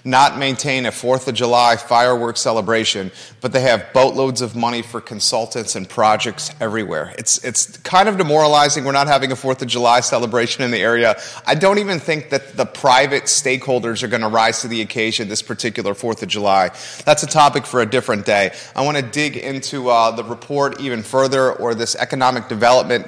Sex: male